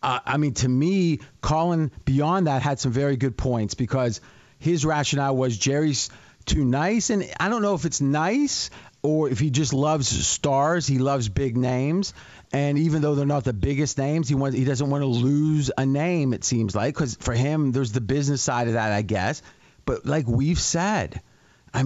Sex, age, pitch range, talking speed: male, 40-59, 125-155 Hz, 200 wpm